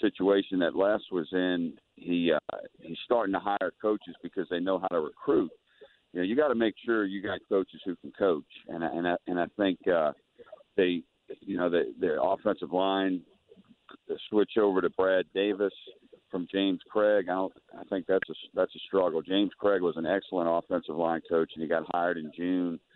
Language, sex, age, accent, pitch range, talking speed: English, male, 50-69, American, 85-105 Hz, 205 wpm